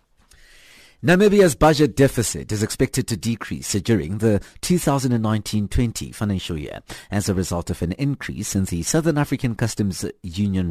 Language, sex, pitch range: English, male, 95-130 Hz